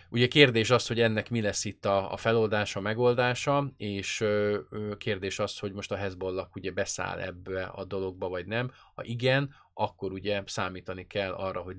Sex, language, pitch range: male, Hungarian, 95-115 Hz